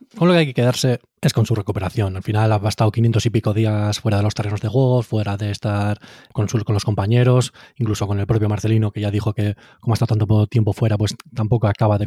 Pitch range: 105-115 Hz